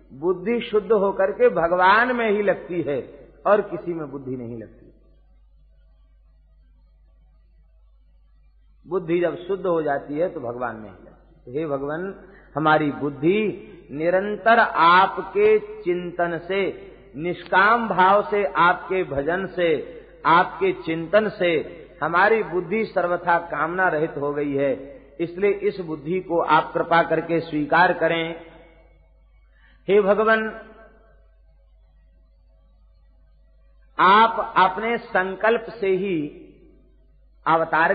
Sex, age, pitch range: male, 50-69, 155-205 Hz